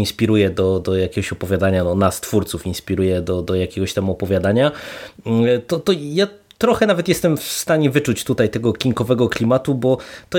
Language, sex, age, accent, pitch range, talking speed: Polish, male, 20-39, native, 110-145 Hz, 160 wpm